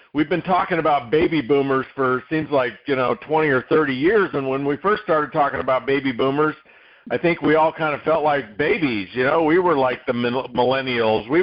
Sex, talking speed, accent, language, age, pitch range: male, 215 wpm, American, English, 50-69, 115-155 Hz